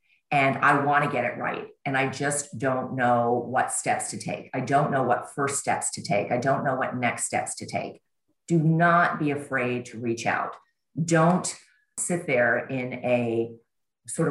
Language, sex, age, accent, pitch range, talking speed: English, female, 40-59, American, 120-155 Hz, 185 wpm